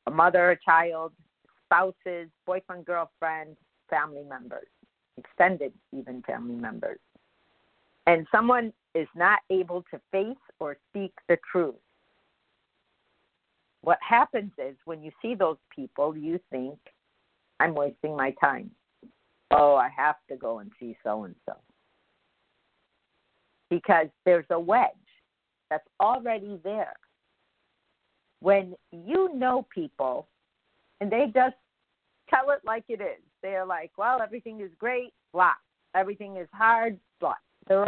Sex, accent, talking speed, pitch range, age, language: female, American, 120 wpm, 165-230 Hz, 50-69, English